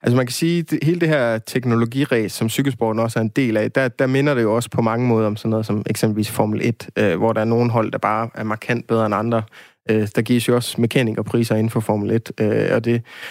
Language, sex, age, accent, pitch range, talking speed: Danish, male, 20-39, native, 110-125 Hz, 260 wpm